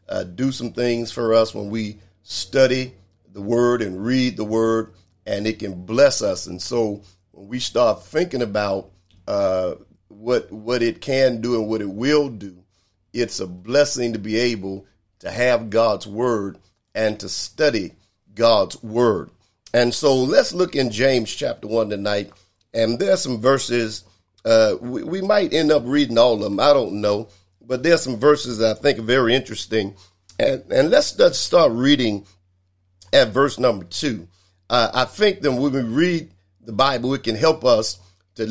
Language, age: English, 50-69